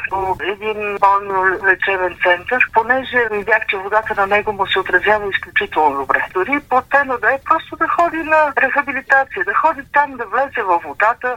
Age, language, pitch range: 50-69, Bulgarian, 190-255 Hz